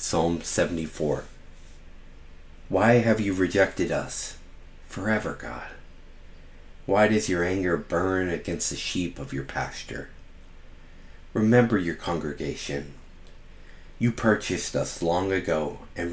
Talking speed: 110 wpm